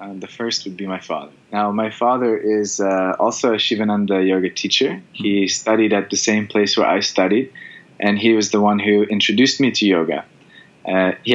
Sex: male